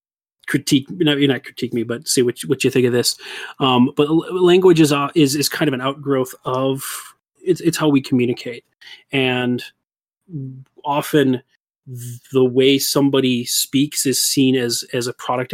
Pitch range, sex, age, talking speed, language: 125-140 Hz, male, 30-49, 170 wpm, English